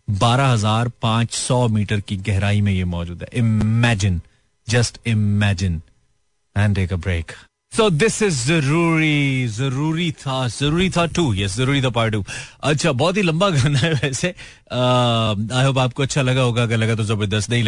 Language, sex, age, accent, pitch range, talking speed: Hindi, male, 30-49, native, 110-145 Hz, 155 wpm